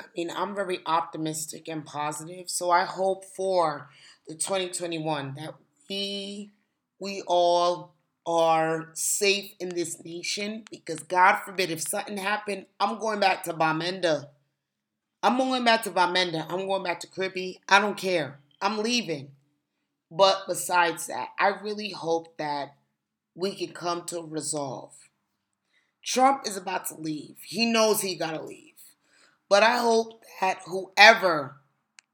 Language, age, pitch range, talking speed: English, 30-49, 160-195 Hz, 140 wpm